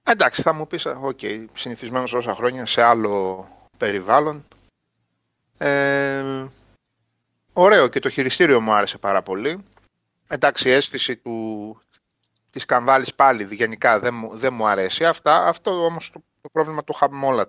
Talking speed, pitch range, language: 145 wpm, 115-155 Hz, Greek